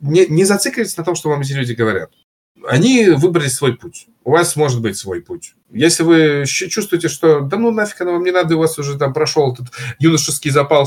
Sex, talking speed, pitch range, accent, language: male, 215 wpm, 110-160 Hz, native, Russian